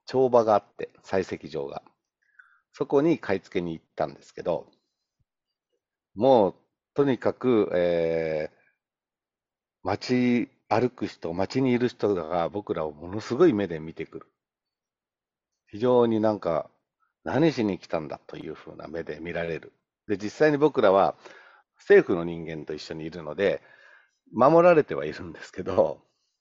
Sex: male